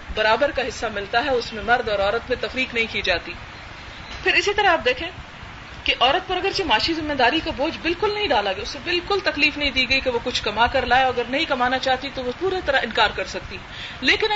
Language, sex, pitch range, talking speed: Urdu, female, 250-310 Hz, 240 wpm